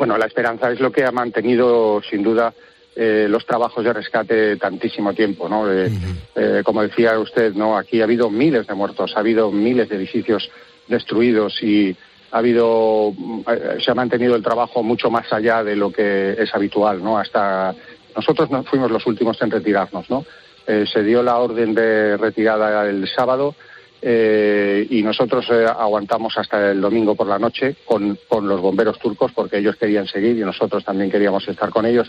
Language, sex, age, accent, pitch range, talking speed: Spanish, male, 40-59, Spanish, 105-120 Hz, 185 wpm